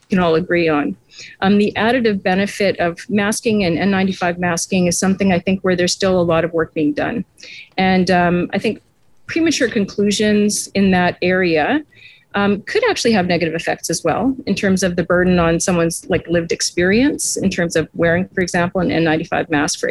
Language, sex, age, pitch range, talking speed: English, female, 40-59, 170-205 Hz, 190 wpm